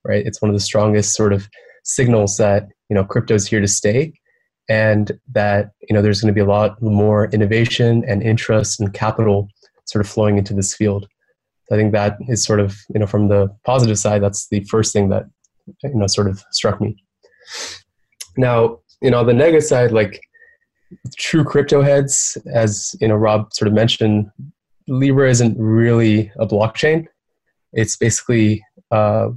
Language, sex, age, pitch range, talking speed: English, male, 20-39, 105-115 Hz, 180 wpm